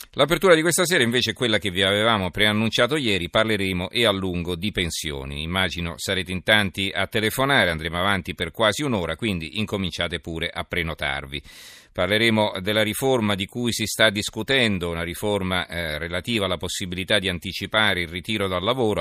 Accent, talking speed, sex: native, 165 wpm, male